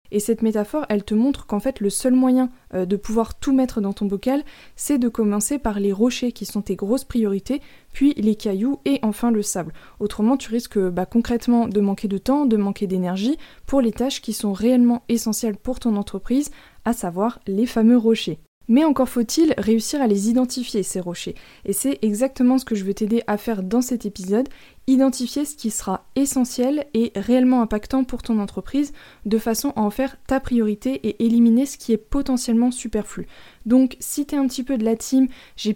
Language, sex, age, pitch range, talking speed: French, female, 20-39, 210-255 Hz, 205 wpm